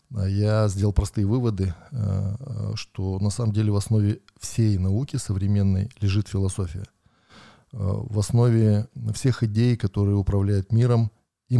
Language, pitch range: Russian, 100-115 Hz